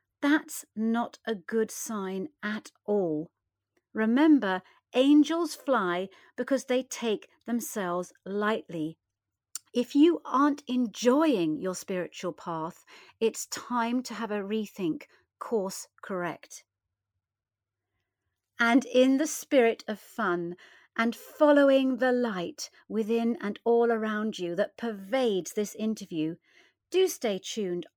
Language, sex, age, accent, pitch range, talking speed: English, female, 50-69, British, 185-255 Hz, 110 wpm